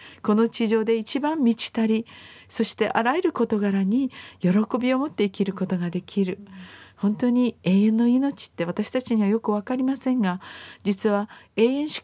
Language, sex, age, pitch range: Japanese, female, 50-69, 185-225 Hz